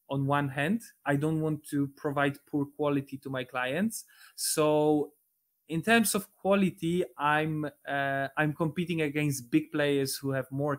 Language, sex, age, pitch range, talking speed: English, male, 20-39, 140-165 Hz, 155 wpm